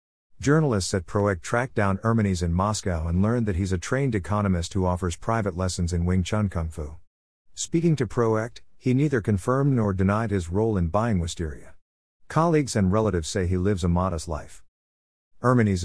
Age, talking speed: 50-69, 180 wpm